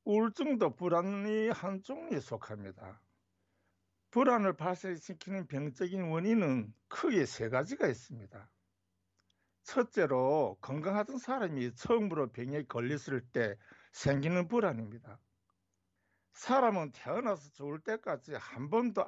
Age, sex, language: 60-79, male, Korean